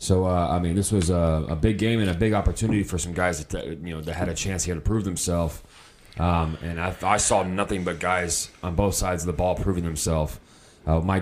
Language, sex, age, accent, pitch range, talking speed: English, male, 20-39, American, 85-100 Hz, 255 wpm